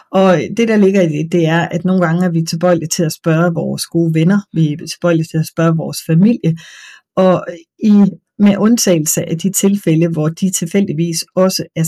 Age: 30-49